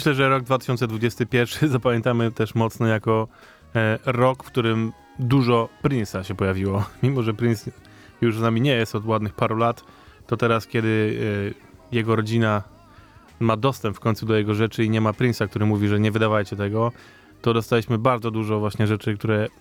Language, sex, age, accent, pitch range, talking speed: Polish, male, 20-39, native, 110-130 Hz, 180 wpm